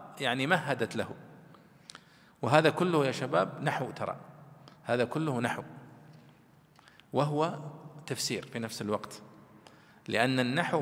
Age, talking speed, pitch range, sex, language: 40-59, 105 wpm, 135-180 Hz, male, Arabic